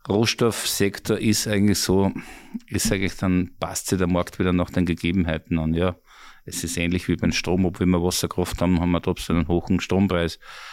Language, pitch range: German, 90-105 Hz